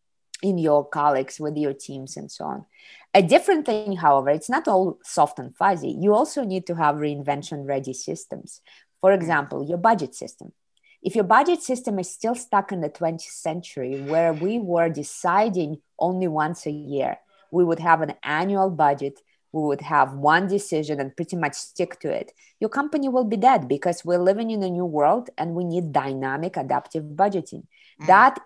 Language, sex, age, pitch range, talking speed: English, female, 20-39, 150-195 Hz, 180 wpm